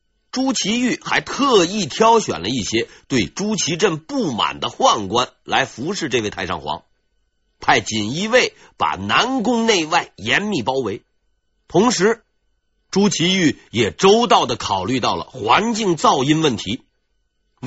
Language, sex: Chinese, male